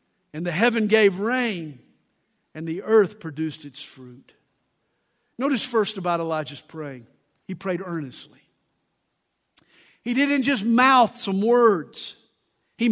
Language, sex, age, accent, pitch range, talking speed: English, male, 50-69, American, 180-255 Hz, 120 wpm